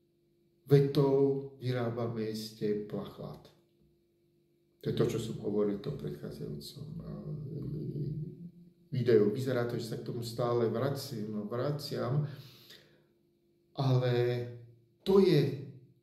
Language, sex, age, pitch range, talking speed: Slovak, male, 50-69, 120-170 Hz, 95 wpm